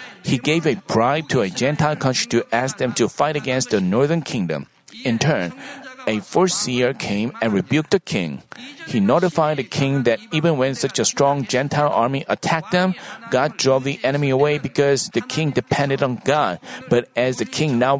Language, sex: Korean, male